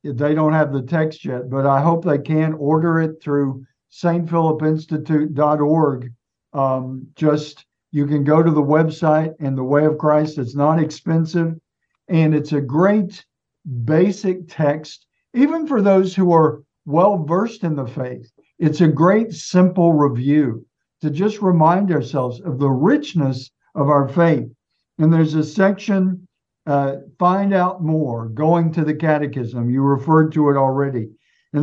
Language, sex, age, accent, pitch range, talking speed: English, male, 60-79, American, 140-175 Hz, 155 wpm